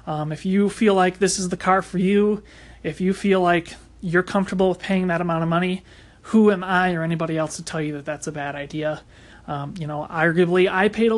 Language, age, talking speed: English, 30-49, 235 wpm